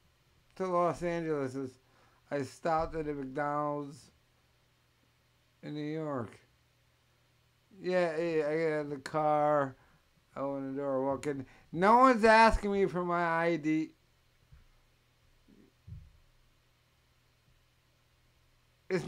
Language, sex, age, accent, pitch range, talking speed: English, male, 60-79, American, 110-170 Hz, 100 wpm